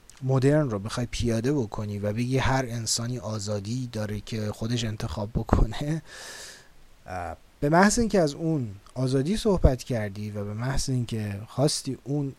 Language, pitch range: Persian, 100-135 Hz